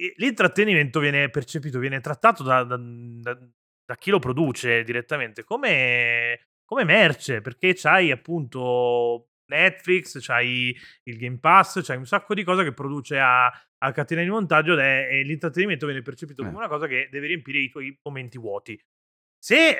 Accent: native